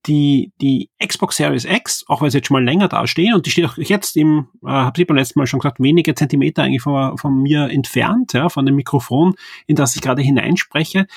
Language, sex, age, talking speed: German, male, 30-49, 235 wpm